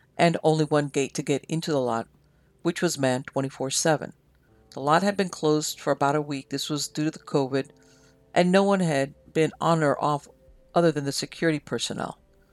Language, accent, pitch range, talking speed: English, American, 130-170 Hz, 195 wpm